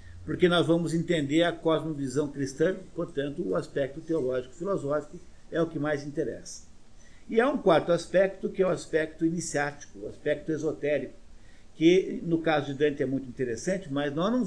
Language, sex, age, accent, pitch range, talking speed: Portuguese, male, 50-69, Brazilian, 130-170 Hz, 165 wpm